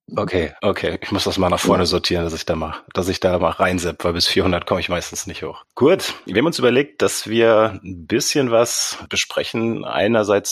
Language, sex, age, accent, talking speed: German, male, 30-49, German, 200 wpm